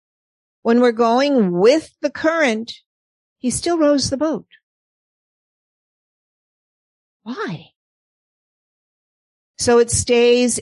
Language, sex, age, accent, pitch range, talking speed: English, female, 50-69, American, 185-245 Hz, 85 wpm